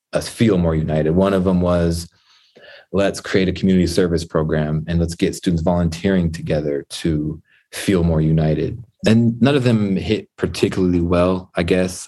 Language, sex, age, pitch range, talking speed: English, male, 20-39, 85-95 Hz, 165 wpm